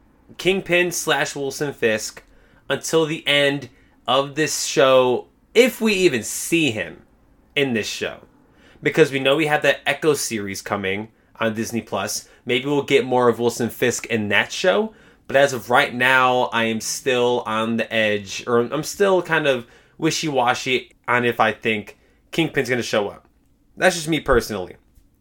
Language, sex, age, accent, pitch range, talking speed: English, male, 20-39, American, 110-155 Hz, 165 wpm